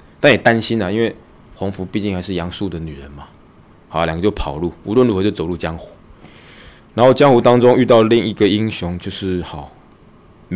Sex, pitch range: male, 85-110 Hz